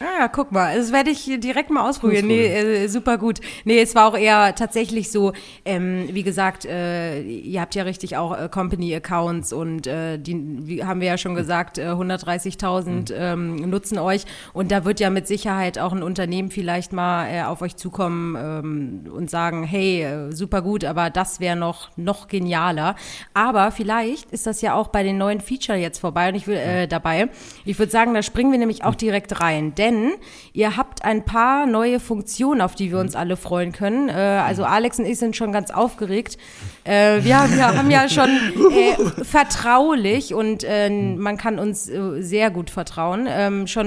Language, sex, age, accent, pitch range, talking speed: German, female, 30-49, German, 180-220 Hz, 195 wpm